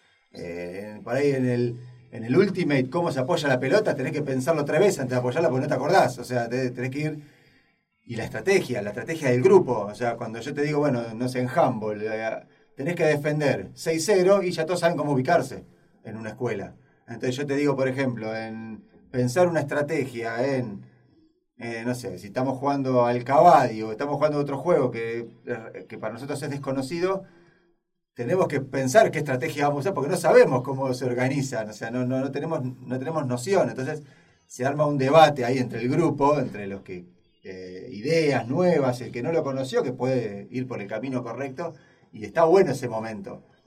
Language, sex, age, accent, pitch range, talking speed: Spanish, male, 30-49, Argentinian, 120-150 Hz, 205 wpm